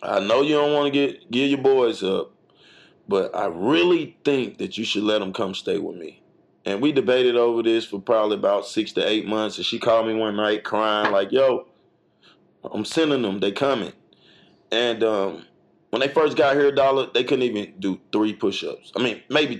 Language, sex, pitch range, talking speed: English, male, 105-135 Hz, 210 wpm